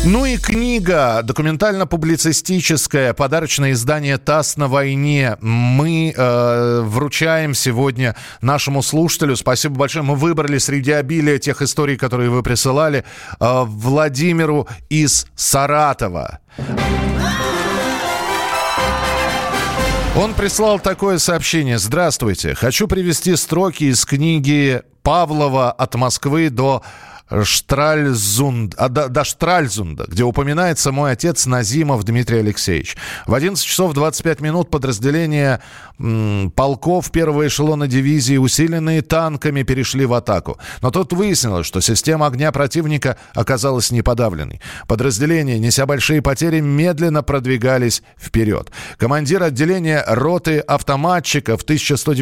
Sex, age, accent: male, 40-59, native